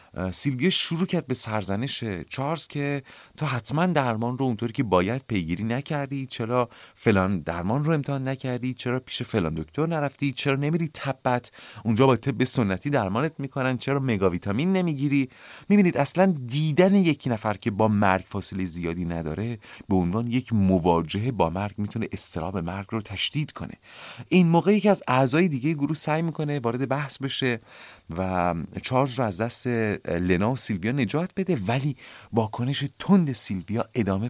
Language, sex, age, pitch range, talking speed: Persian, male, 30-49, 100-145 Hz, 155 wpm